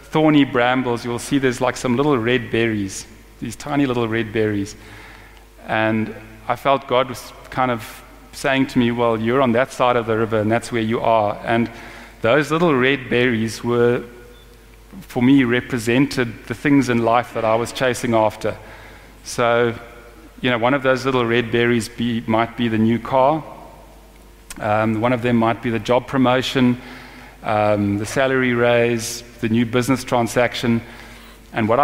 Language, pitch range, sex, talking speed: English, 115-130 Hz, male, 170 wpm